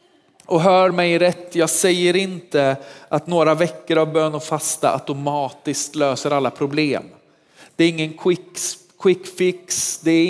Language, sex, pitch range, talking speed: Swedish, male, 140-165 Hz, 145 wpm